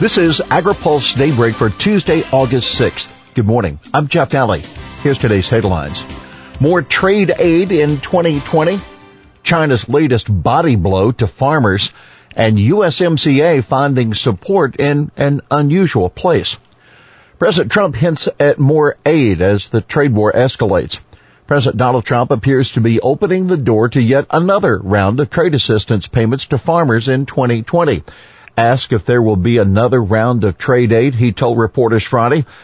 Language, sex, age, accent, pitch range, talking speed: English, male, 50-69, American, 105-140 Hz, 150 wpm